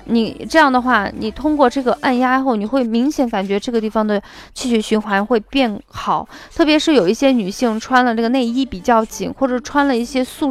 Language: Chinese